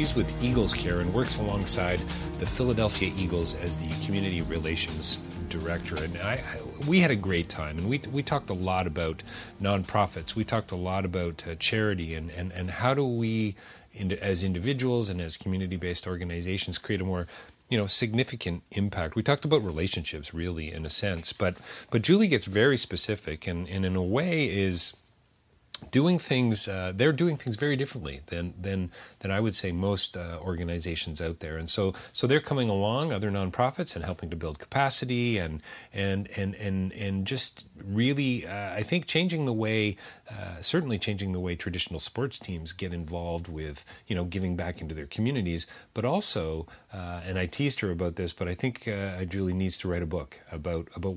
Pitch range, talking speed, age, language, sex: 85-115 Hz, 190 wpm, 40-59, English, male